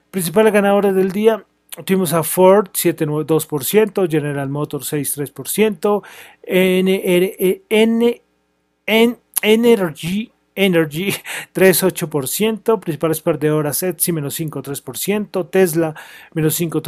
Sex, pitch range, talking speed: male, 155-190 Hz, 75 wpm